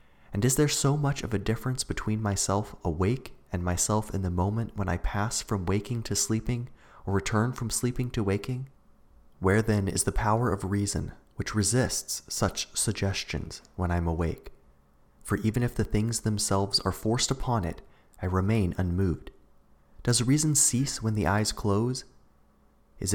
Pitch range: 90-115 Hz